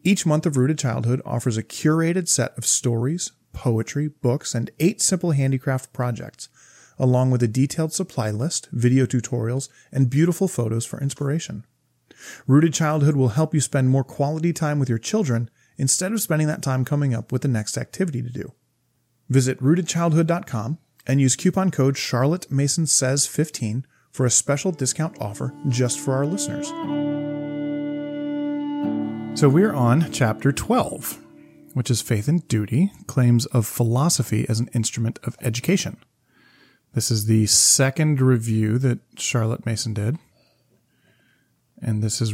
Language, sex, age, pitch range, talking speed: English, male, 30-49, 115-150 Hz, 145 wpm